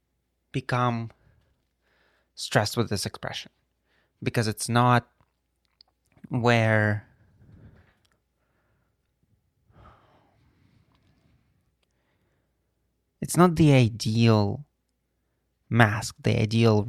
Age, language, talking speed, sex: 20-39, English, 55 wpm, male